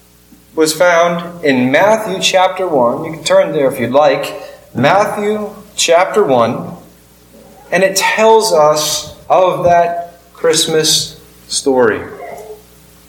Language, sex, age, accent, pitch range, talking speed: English, male, 30-49, American, 115-190 Hz, 110 wpm